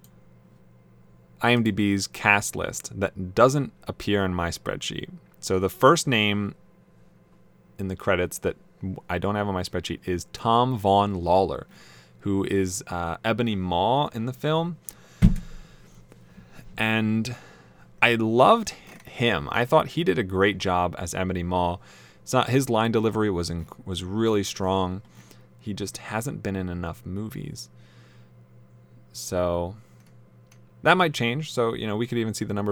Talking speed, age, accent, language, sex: 140 wpm, 20-39, American, English, male